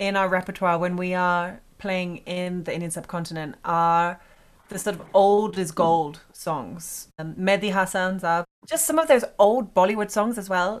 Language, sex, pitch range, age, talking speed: English, female, 175-205 Hz, 20-39, 170 wpm